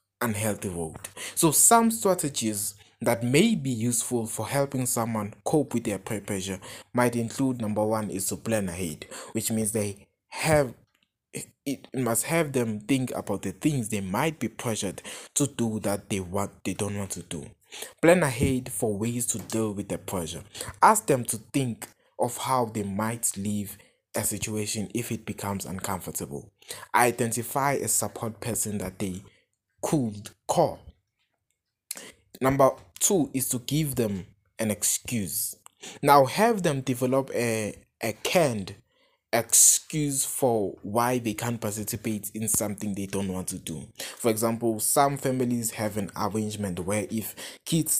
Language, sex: English, male